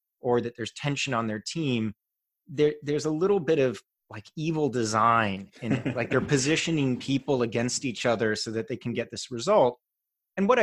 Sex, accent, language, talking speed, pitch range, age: male, American, Swedish, 190 wpm, 115-150 Hz, 30-49